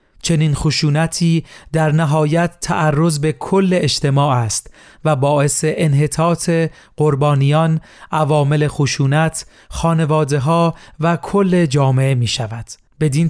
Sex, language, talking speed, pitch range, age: male, Persian, 95 wpm, 140-165 Hz, 40-59